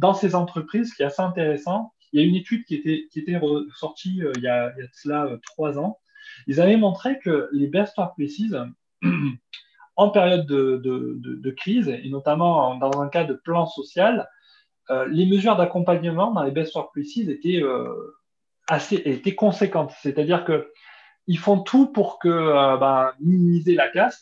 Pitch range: 140-195 Hz